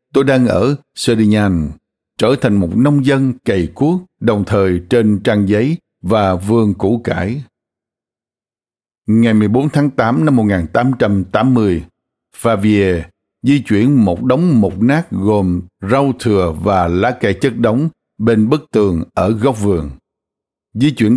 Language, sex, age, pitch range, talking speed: Vietnamese, male, 60-79, 100-130 Hz, 140 wpm